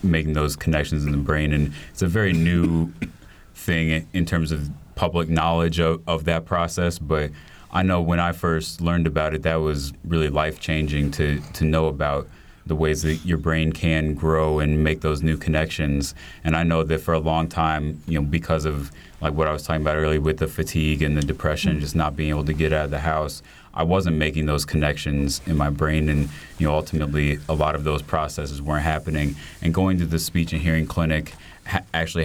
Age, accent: 30-49, American